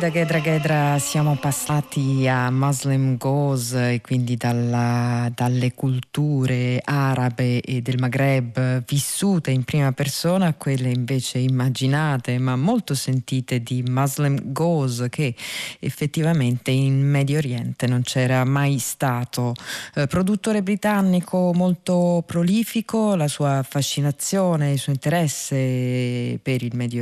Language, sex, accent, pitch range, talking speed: Italian, female, native, 130-160 Hz, 120 wpm